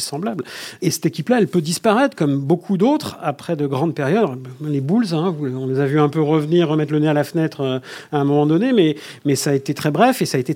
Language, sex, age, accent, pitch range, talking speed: French, male, 50-69, French, 145-190 Hz, 255 wpm